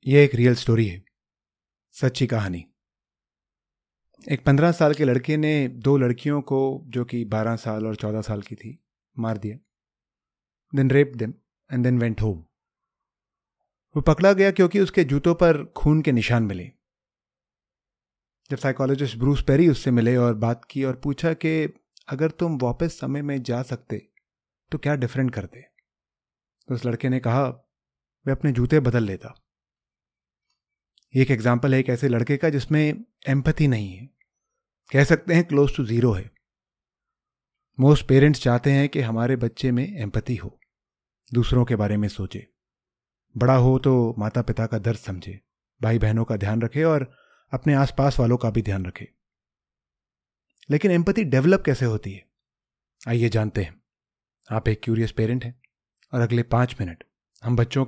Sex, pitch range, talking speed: male, 110-140 Hz, 160 wpm